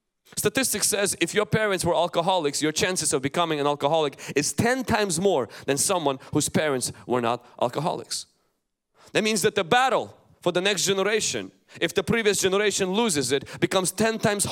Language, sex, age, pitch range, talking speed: English, male, 30-49, 115-175 Hz, 175 wpm